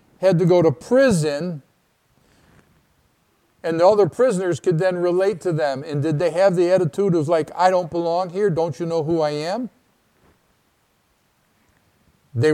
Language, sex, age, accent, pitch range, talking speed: English, male, 50-69, American, 145-185 Hz, 160 wpm